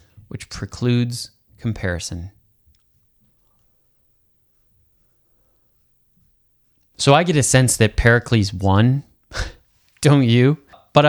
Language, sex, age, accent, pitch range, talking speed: English, male, 20-39, American, 105-125 Hz, 75 wpm